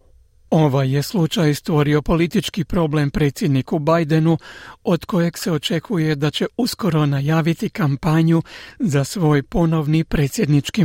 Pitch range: 145-165 Hz